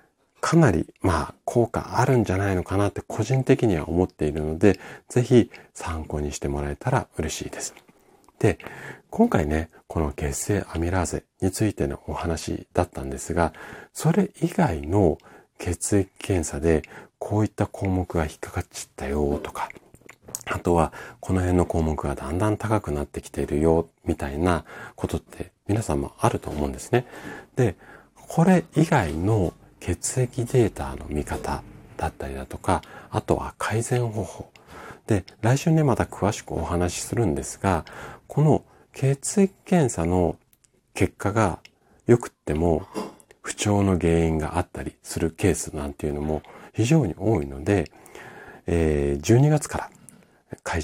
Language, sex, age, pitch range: Japanese, male, 40-59, 75-115 Hz